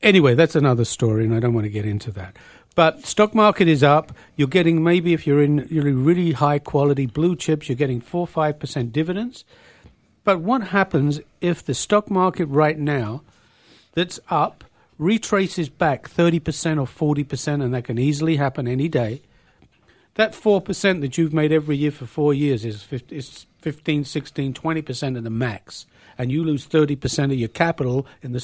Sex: male